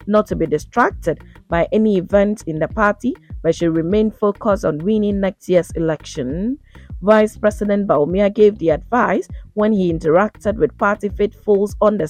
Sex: female